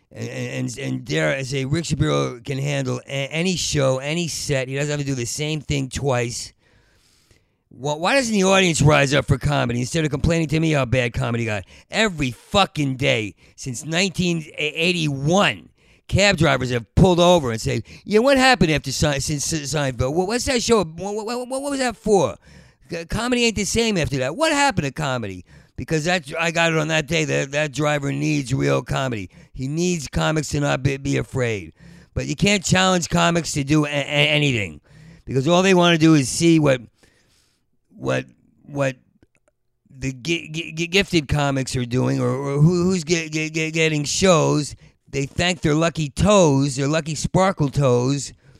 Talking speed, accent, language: 180 wpm, American, English